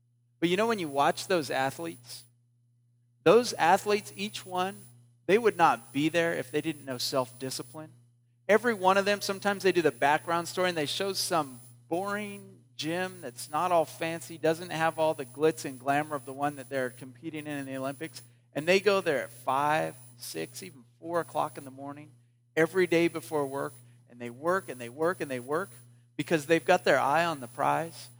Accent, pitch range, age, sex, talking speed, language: American, 120-170 Hz, 40-59, male, 200 wpm, English